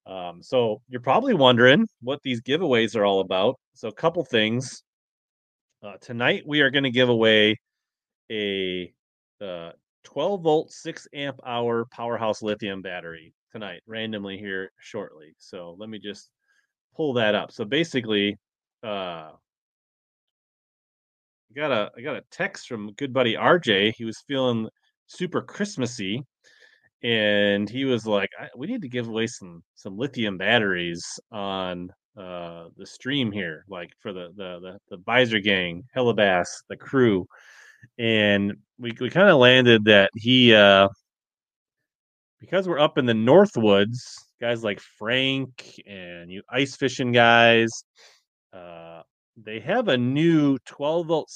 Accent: American